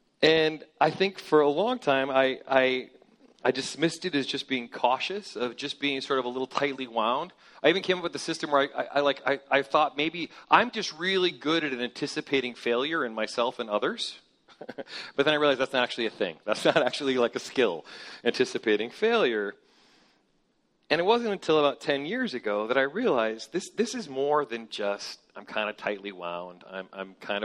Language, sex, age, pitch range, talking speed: English, male, 40-59, 110-155 Hz, 210 wpm